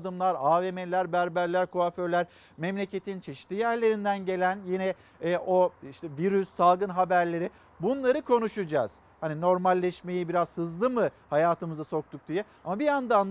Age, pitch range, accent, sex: 50-69, 180-230 Hz, native, male